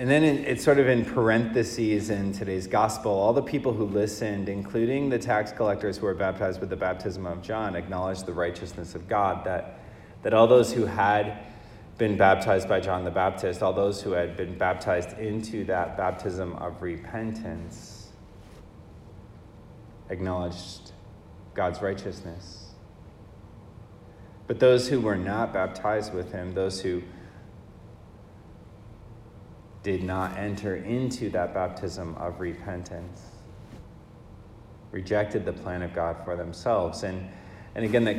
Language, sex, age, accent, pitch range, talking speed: English, male, 30-49, American, 90-105 Hz, 135 wpm